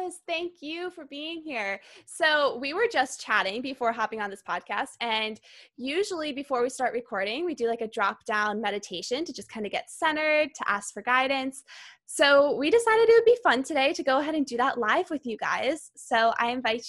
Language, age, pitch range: English, 10-29, 225-290 Hz